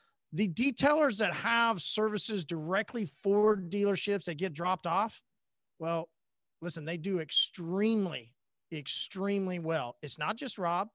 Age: 40-59